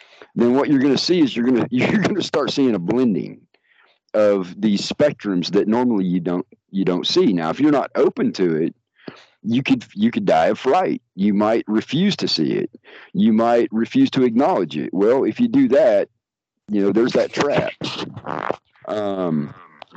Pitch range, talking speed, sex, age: 90-125 Hz, 190 wpm, male, 50-69